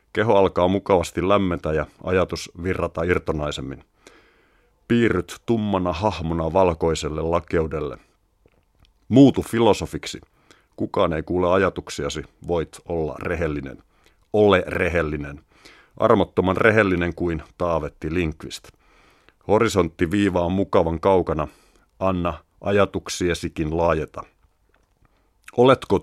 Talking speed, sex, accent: 90 wpm, male, native